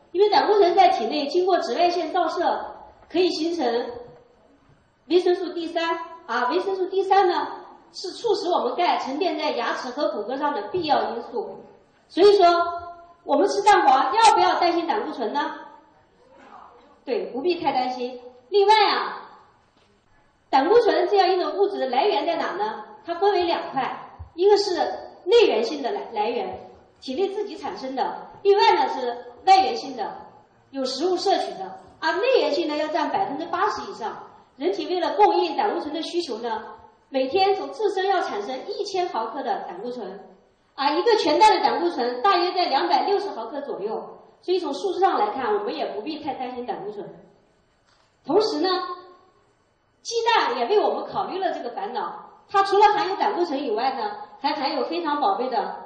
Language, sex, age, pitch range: Chinese, female, 40-59, 315-405 Hz